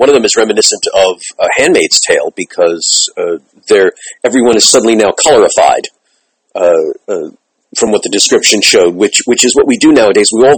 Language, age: English, 40-59